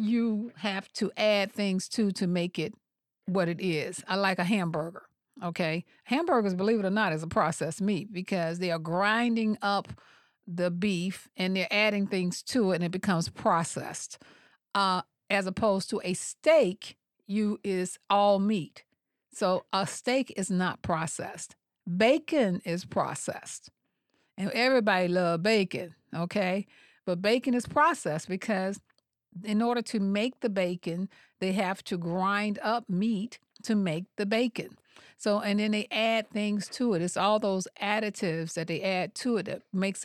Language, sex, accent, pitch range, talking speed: English, female, American, 180-220 Hz, 160 wpm